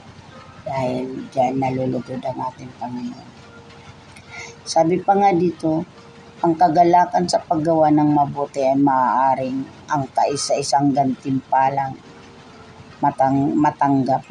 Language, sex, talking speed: Filipino, female, 95 wpm